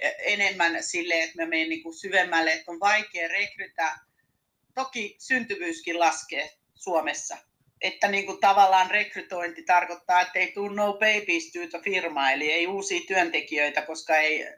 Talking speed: 125 wpm